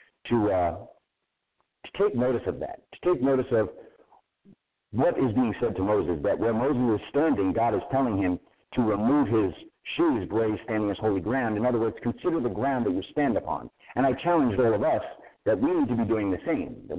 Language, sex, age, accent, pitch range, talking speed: English, male, 50-69, American, 100-130 Hz, 210 wpm